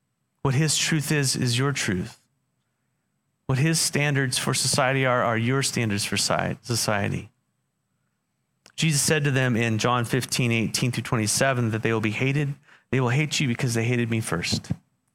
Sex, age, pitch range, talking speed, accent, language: male, 30-49, 105-135 Hz, 165 wpm, American, English